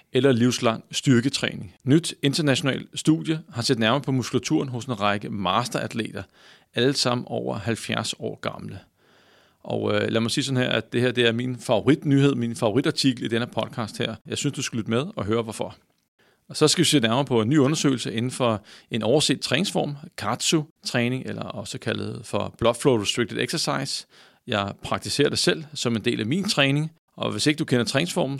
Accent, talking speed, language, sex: native, 190 wpm, Danish, male